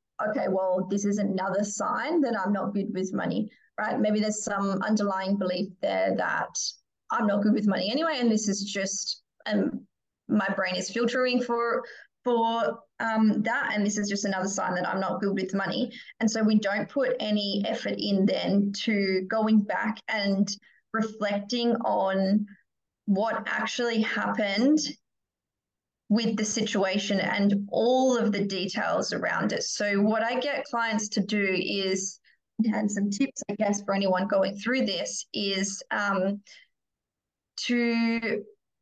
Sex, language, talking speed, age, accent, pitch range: female, English, 155 wpm, 20-39, Australian, 200-230 Hz